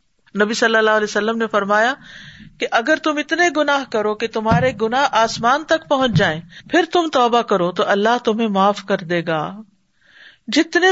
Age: 50-69